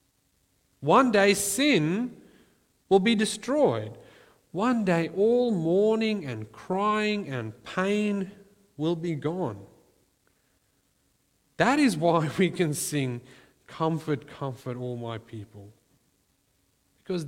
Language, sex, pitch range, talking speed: English, male, 140-190 Hz, 100 wpm